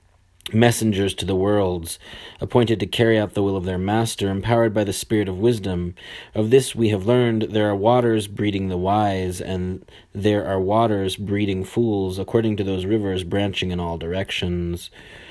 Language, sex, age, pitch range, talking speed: English, male, 30-49, 95-115 Hz, 175 wpm